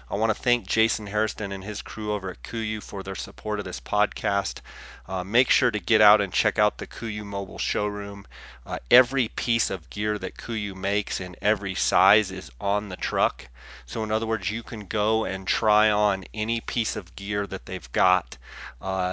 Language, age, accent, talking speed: English, 30-49, American, 200 wpm